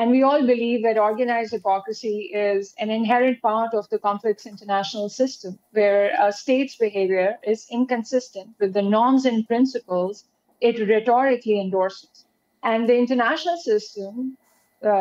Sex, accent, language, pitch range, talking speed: female, Indian, English, 205-245 Hz, 140 wpm